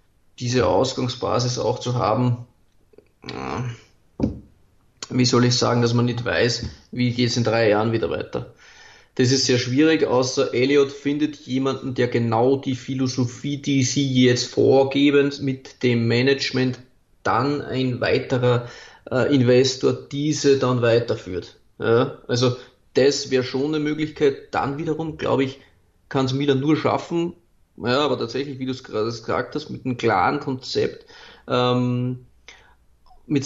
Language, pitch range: German, 120-140 Hz